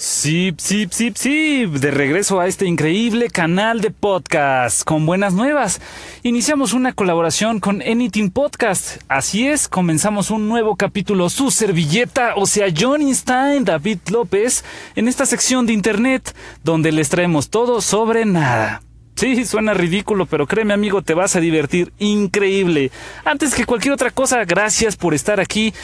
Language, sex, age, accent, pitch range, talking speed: English, male, 30-49, Mexican, 160-225 Hz, 155 wpm